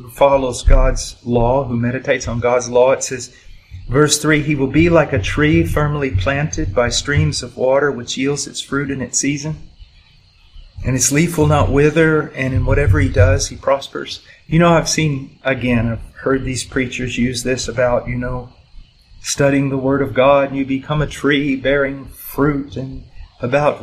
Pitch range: 115-145 Hz